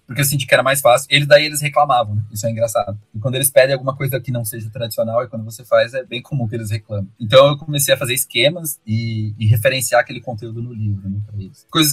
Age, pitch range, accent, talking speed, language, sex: 20-39, 105-140 Hz, Brazilian, 250 wpm, Portuguese, male